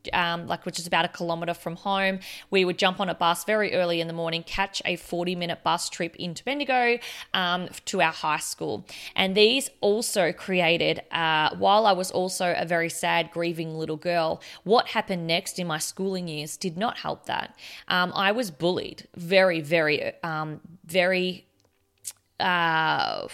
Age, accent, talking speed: 20-39, Australian, 170 wpm